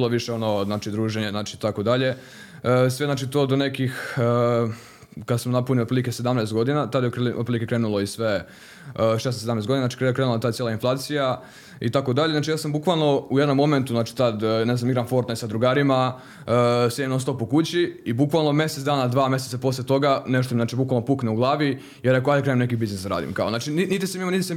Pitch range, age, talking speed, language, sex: 120-140 Hz, 20-39, 215 wpm, Croatian, male